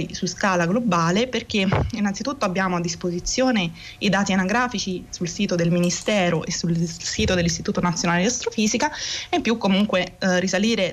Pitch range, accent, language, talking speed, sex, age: 180-245 Hz, native, Italian, 150 wpm, female, 20-39